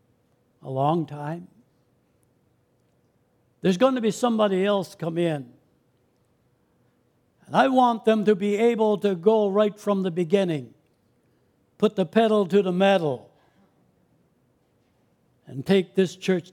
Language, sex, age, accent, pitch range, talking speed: English, male, 60-79, American, 150-205 Hz, 125 wpm